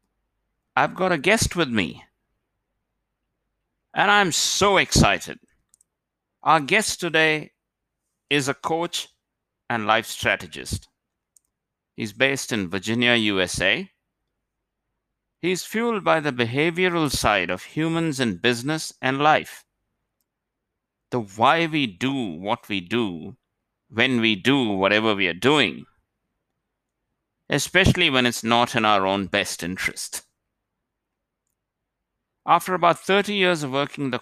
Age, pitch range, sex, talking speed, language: 60-79, 110-145 Hz, male, 120 wpm, English